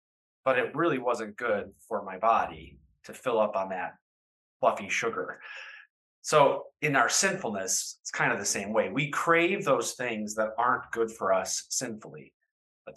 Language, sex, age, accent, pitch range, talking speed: English, male, 30-49, American, 130-175 Hz, 165 wpm